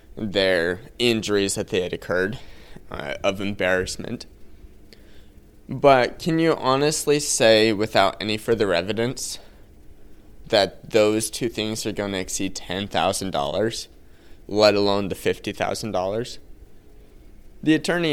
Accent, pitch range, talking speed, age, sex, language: American, 95-120 Hz, 110 wpm, 20-39, male, English